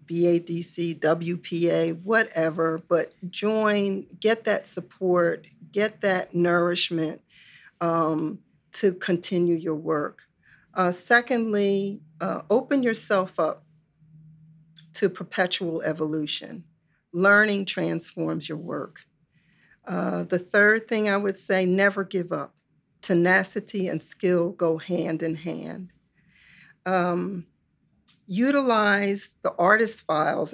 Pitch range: 165-200 Hz